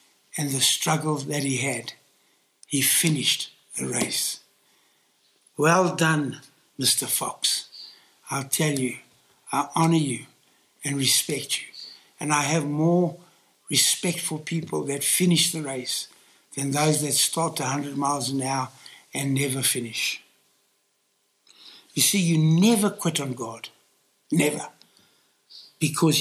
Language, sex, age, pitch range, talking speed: English, male, 60-79, 140-165 Hz, 125 wpm